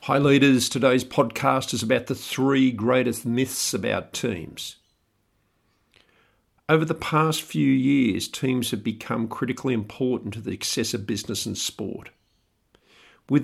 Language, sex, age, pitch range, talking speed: English, male, 50-69, 110-130 Hz, 135 wpm